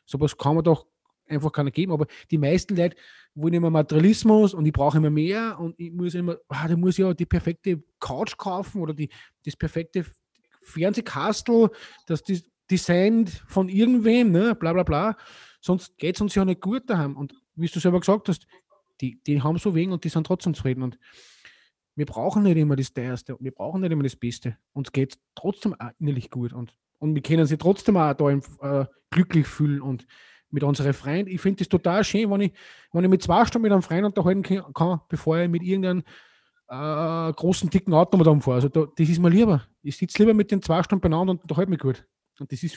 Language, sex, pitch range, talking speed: German, male, 145-185 Hz, 215 wpm